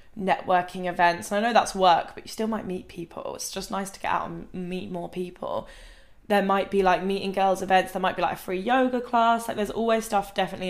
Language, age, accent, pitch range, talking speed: English, 10-29, British, 175-205 Hz, 240 wpm